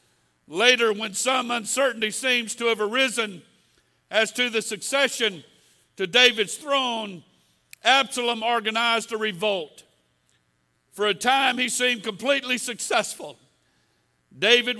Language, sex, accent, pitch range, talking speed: English, male, American, 210-255 Hz, 110 wpm